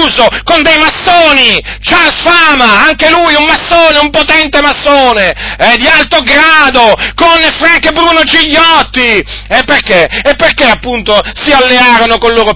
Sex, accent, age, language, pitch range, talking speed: male, native, 40-59, Italian, 185-300 Hz, 140 wpm